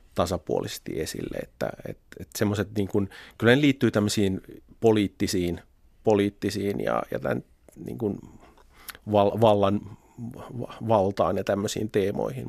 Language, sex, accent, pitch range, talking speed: Finnish, male, native, 90-105 Hz, 100 wpm